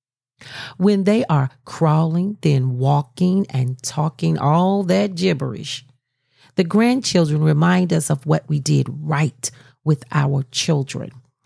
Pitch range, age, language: 130-185 Hz, 40-59, English